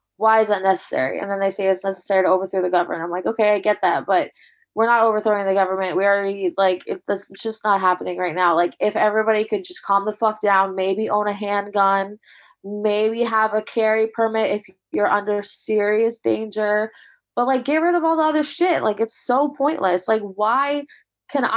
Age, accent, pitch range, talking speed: 20-39, American, 195-230 Hz, 205 wpm